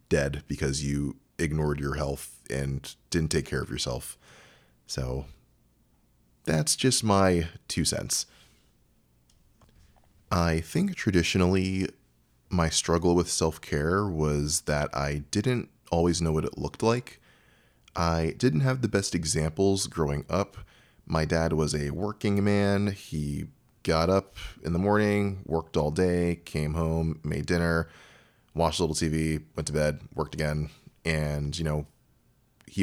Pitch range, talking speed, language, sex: 75-95 Hz, 135 wpm, English, male